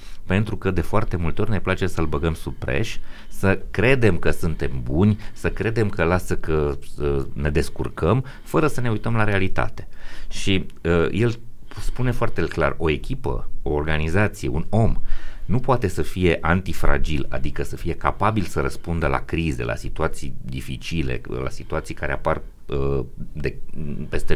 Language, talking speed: Romanian, 160 wpm